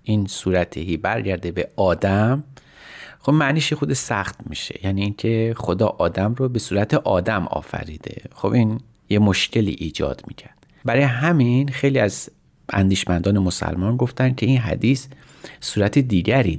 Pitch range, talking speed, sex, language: 95-130 Hz, 135 wpm, male, Persian